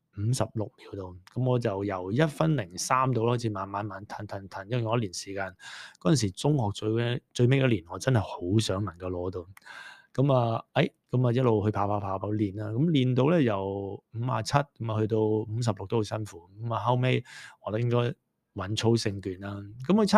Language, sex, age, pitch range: English, male, 20-39, 100-125 Hz